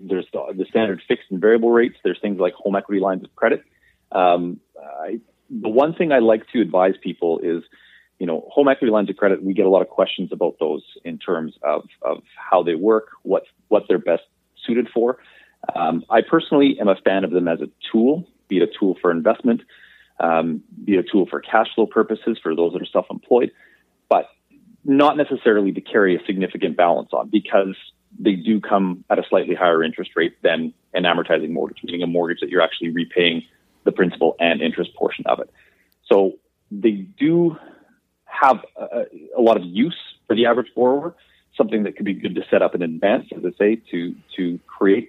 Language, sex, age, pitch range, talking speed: English, male, 30-49, 90-115 Hz, 200 wpm